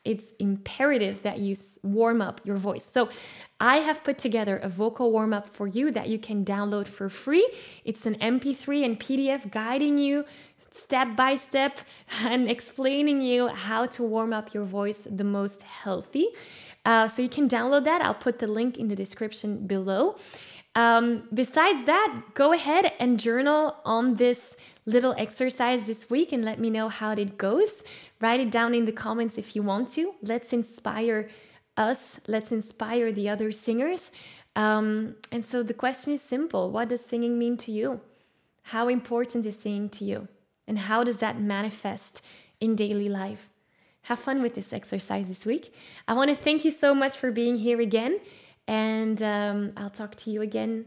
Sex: female